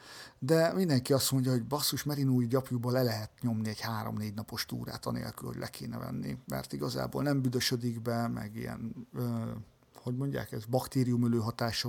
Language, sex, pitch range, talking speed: Hungarian, male, 115-140 Hz, 165 wpm